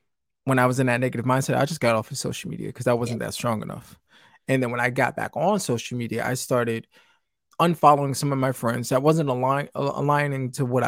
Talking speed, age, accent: 225 wpm, 20-39, American